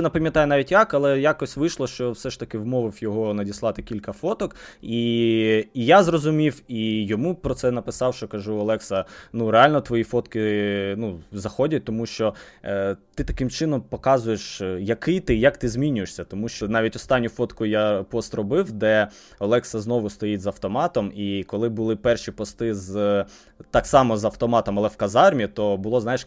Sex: male